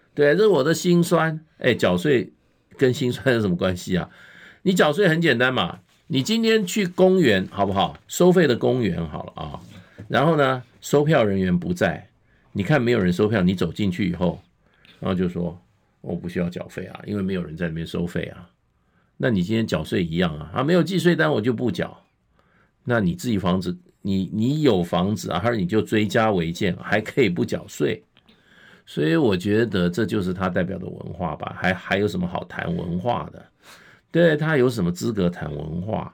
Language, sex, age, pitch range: Chinese, male, 50-69, 95-145 Hz